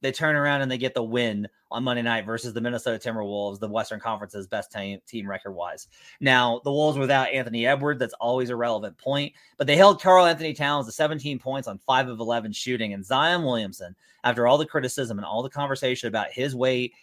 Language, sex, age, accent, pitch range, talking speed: English, male, 30-49, American, 115-145 Hz, 210 wpm